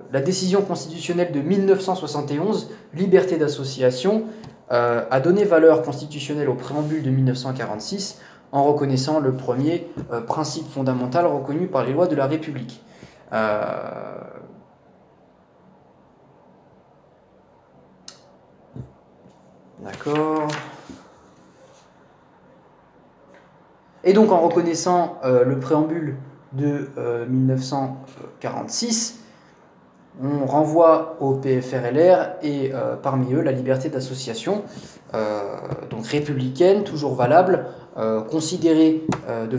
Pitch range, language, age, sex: 125-160 Hz, French, 20-39, male